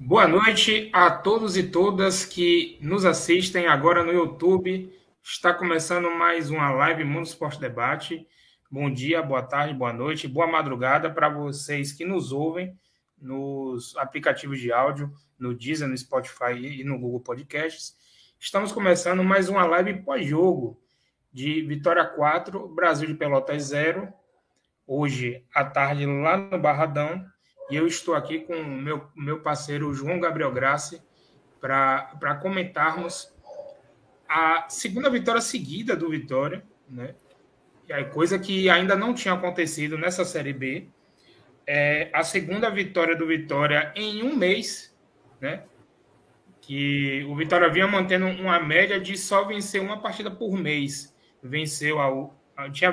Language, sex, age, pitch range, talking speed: Portuguese, male, 20-39, 140-180 Hz, 140 wpm